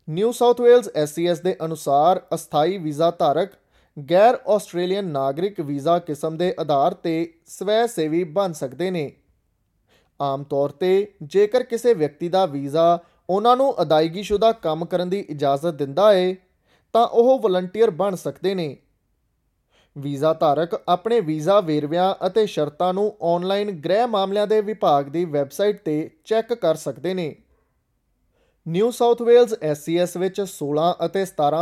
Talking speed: 130 wpm